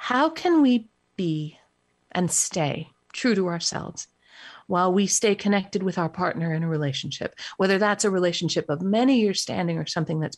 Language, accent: English, American